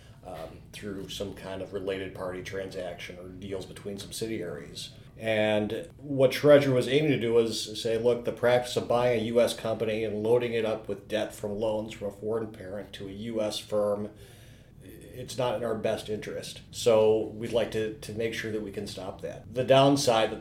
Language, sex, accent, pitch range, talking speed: English, male, American, 105-120 Hz, 195 wpm